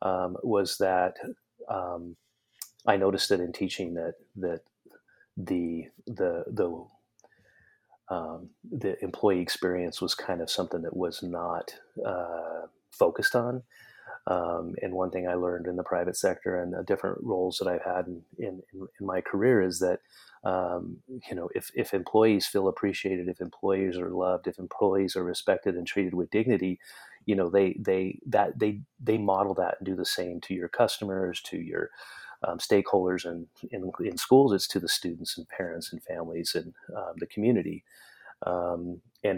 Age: 30-49